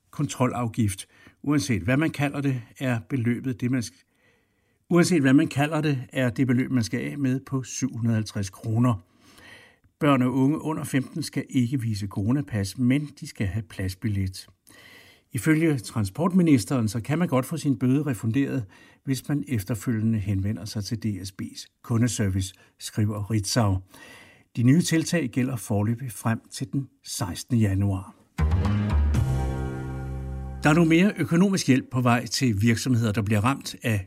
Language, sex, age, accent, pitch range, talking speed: Danish, male, 60-79, native, 105-135 Hz, 150 wpm